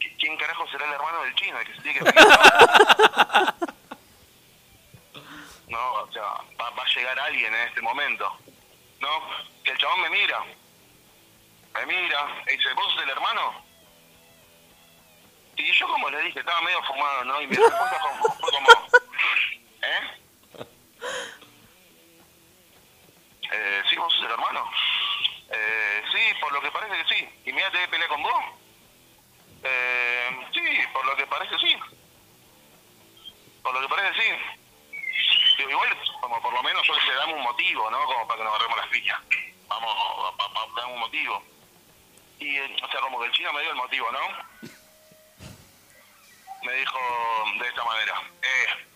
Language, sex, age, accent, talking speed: Spanish, male, 40-59, Argentinian, 160 wpm